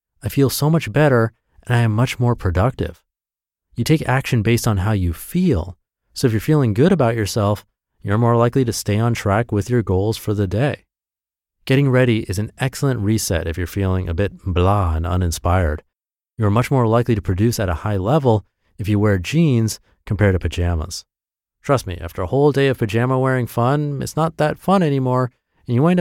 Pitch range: 90-125 Hz